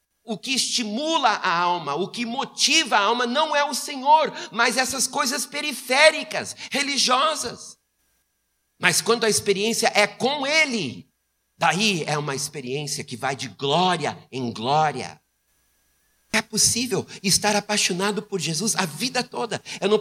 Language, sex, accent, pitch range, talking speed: Portuguese, male, Brazilian, 145-215 Hz, 140 wpm